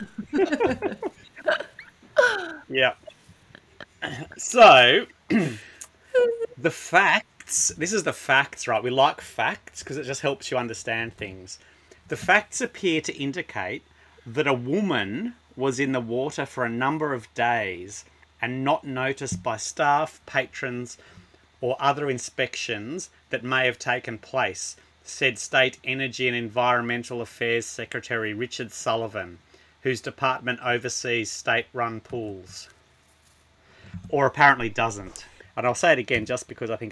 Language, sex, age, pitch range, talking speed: English, male, 30-49, 115-155 Hz, 125 wpm